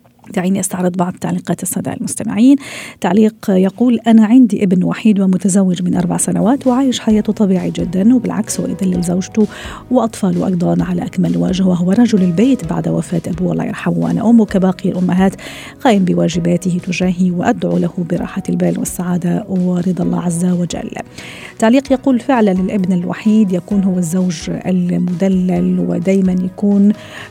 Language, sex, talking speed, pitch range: Arabic, female, 140 wpm, 180-220 Hz